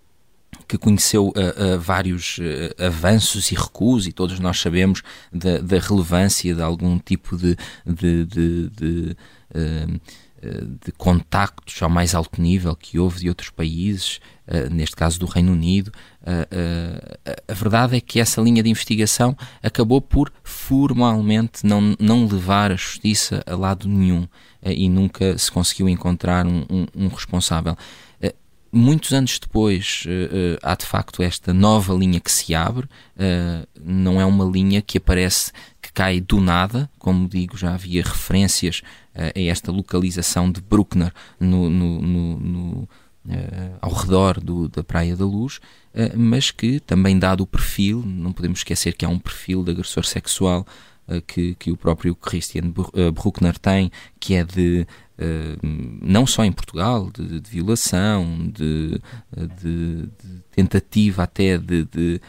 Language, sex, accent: Portuguese, male, Portuguese